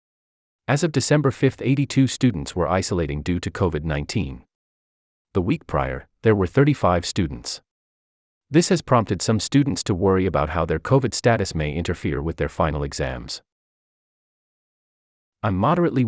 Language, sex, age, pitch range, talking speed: English, male, 30-49, 80-130 Hz, 140 wpm